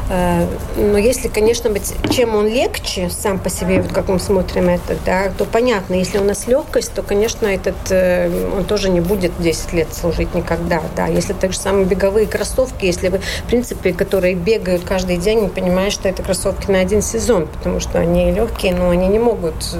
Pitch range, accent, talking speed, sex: 175-200 Hz, native, 190 wpm, female